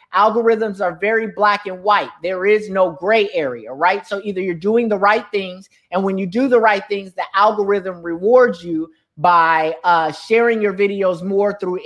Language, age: English, 30-49